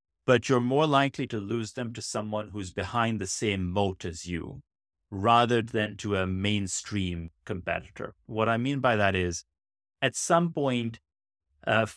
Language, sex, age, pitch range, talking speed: English, male, 30-49, 95-120 Hz, 160 wpm